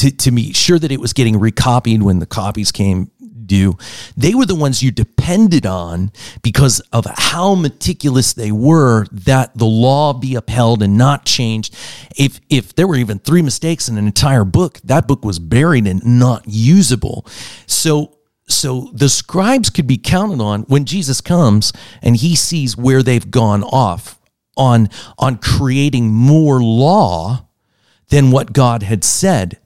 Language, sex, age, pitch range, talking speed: English, male, 40-59, 105-135 Hz, 165 wpm